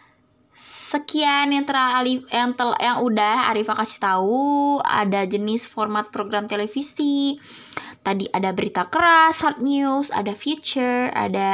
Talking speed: 125 wpm